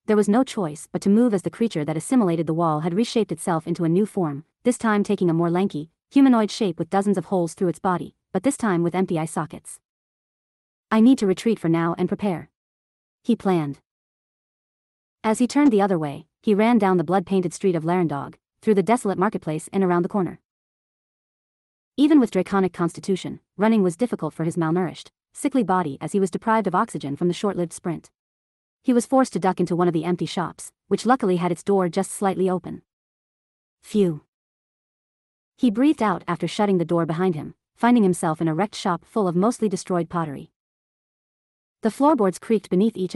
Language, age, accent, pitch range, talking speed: English, 30-49, American, 170-215 Hz, 195 wpm